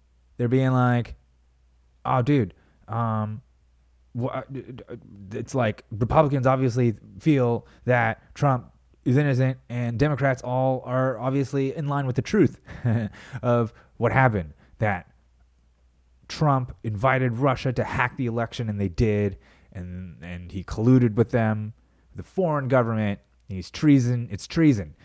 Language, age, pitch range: English, 20-39, 90-125 Hz